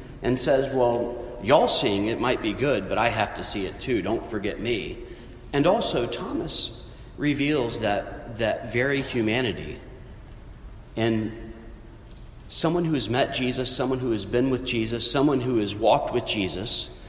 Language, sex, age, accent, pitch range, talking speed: English, male, 40-59, American, 105-135 Hz, 160 wpm